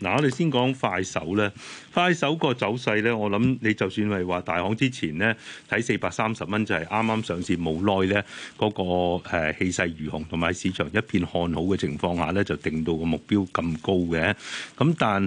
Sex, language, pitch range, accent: male, Chinese, 90-110 Hz, native